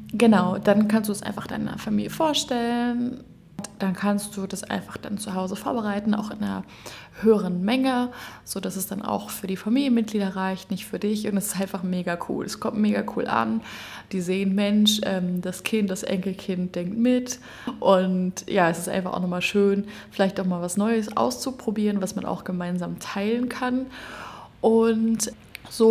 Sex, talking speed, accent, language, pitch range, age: female, 175 wpm, German, German, 190-220 Hz, 20-39